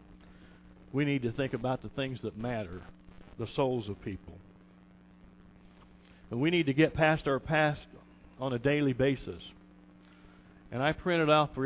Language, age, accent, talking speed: English, 50-69, American, 155 wpm